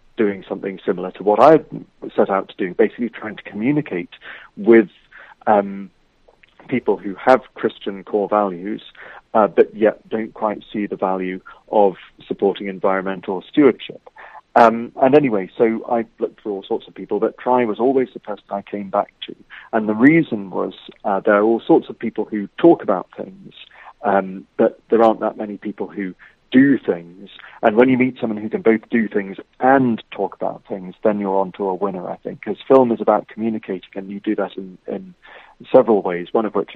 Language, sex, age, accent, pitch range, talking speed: English, male, 40-59, British, 95-110 Hz, 190 wpm